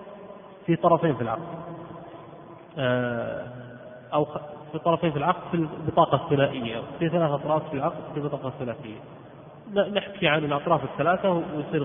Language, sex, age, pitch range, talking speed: Arabic, male, 30-49, 155-200 Hz, 125 wpm